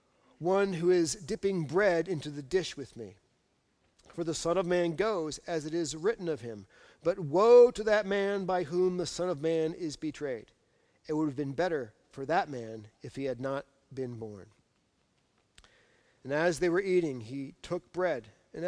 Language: English